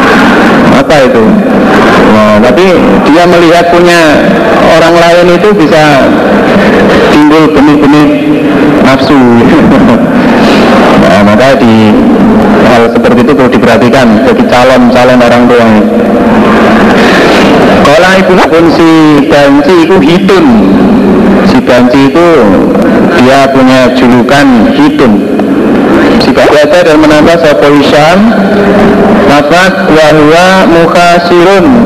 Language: Indonesian